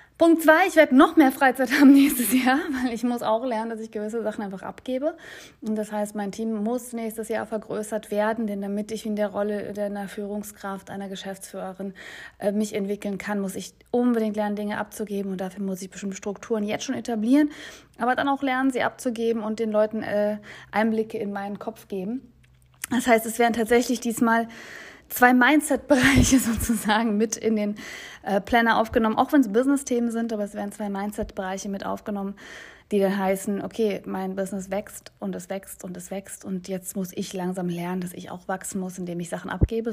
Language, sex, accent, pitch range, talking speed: German, female, German, 195-235 Hz, 195 wpm